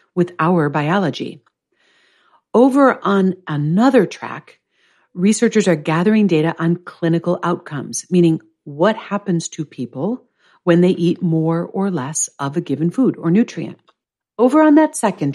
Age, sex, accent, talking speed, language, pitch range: 50-69, female, American, 135 wpm, English, 155-215 Hz